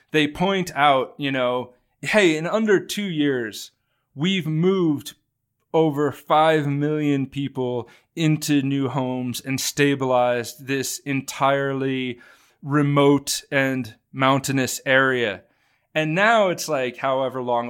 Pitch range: 130-155 Hz